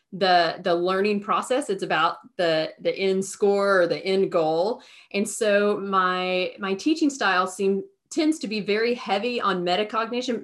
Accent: American